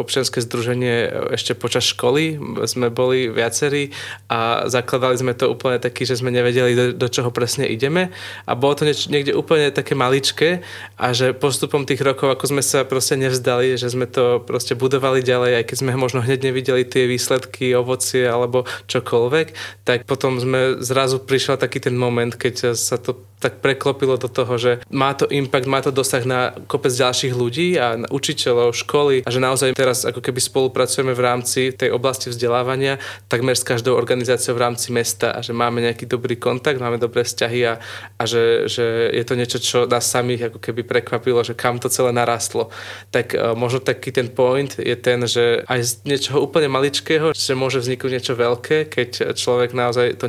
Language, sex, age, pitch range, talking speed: Slovak, male, 20-39, 120-135 Hz, 185 wpm